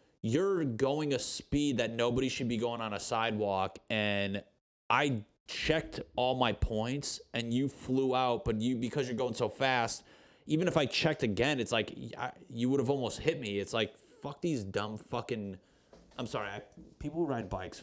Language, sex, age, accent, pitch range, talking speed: English, male, 30-49, American, 105-130 Hz, 180 wpm